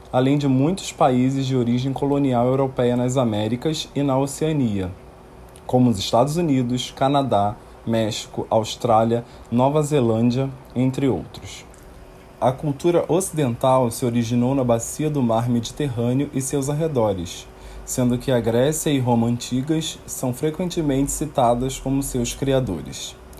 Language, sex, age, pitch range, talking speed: Portuguese, male, 20-39, 120-140 Hz, 130 wpm